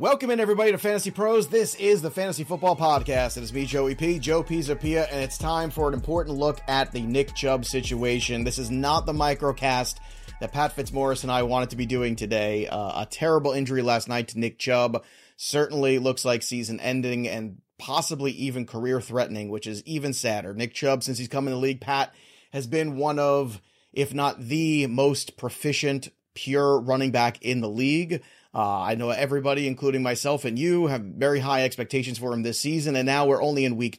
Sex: male